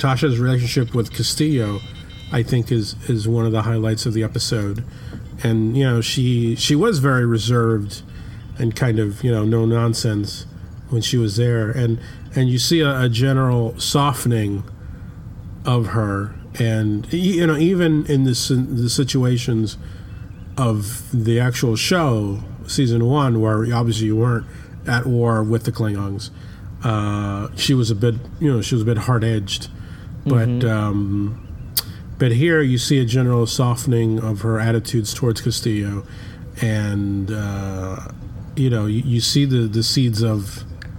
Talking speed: 150 wpm